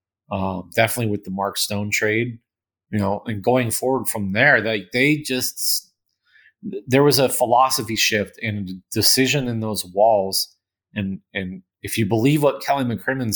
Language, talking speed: English, 165 wpm